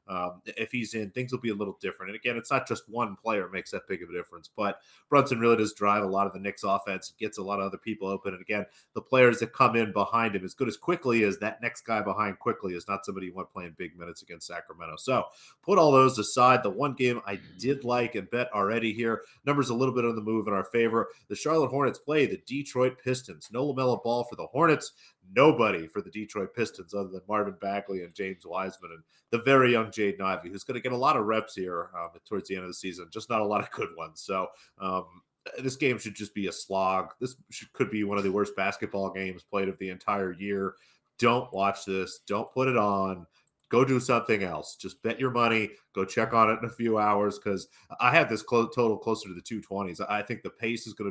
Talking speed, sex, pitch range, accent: 245 wpm, male, 100-120 Hz, American